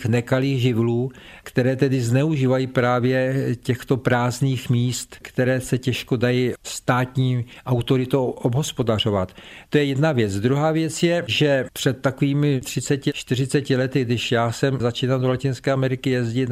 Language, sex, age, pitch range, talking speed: Czech, male, 50-69, 120-135 Hz, 135 wpm